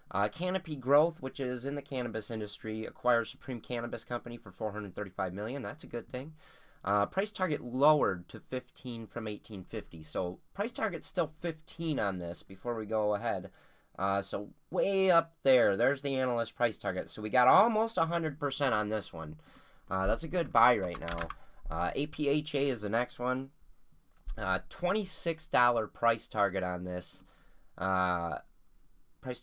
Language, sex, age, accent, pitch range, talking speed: English, male, 30-49, American, 105-140 Hz, 165 wpm